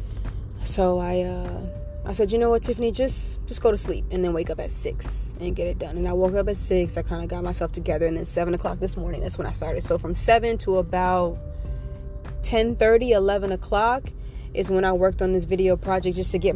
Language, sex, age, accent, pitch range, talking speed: English, female, 20-39, American, 175-220 Hz, 235 wpm